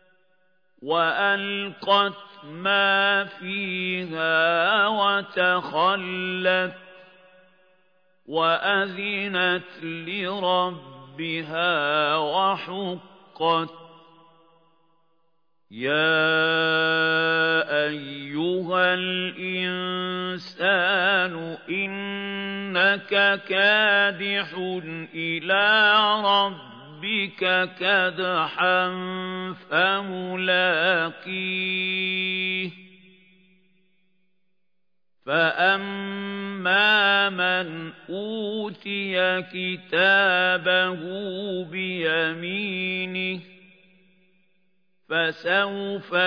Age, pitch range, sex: 50-69, 175-195 Hz, male